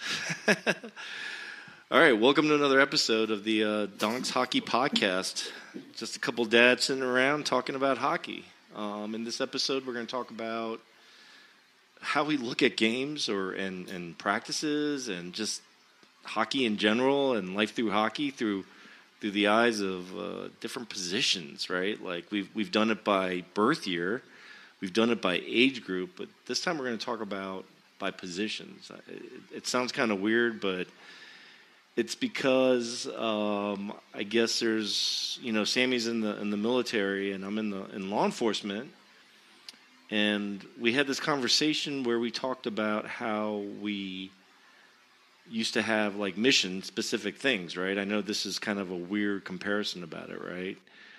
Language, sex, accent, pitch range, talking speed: English, male, American, 100-125 Hz, 165 wpm